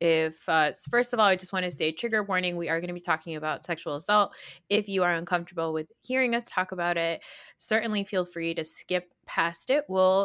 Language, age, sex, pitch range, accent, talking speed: English, 20-39, female, 155-195 Hz, American, 230 wpm